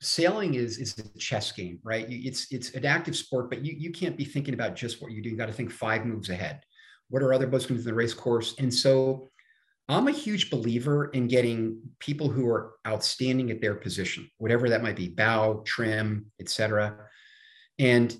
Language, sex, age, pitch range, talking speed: English, male, 40-59, 110-145 Hz, 215 wpm